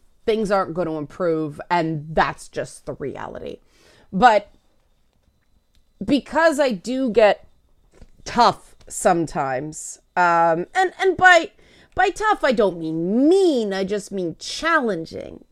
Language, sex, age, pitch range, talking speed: English, female, 30-49, 180-240 Hz, 120 wpm